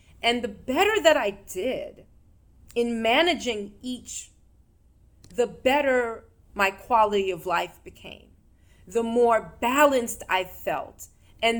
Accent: American